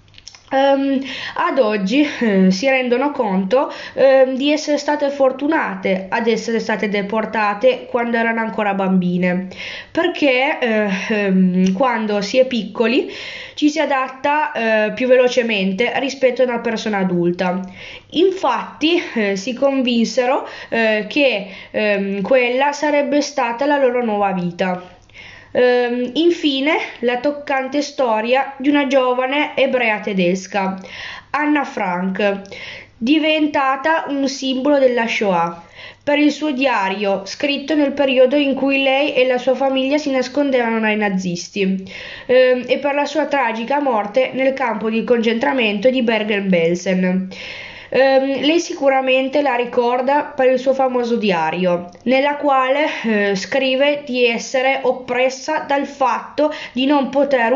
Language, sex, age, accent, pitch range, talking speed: Italian, female, 20-39, native, 210-275 Hz, 120 wpm